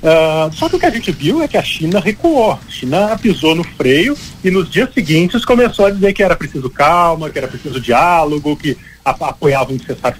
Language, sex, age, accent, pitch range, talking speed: Portuguese, male, 40-59, Brazilian, 145-235 Hz, 220 wpm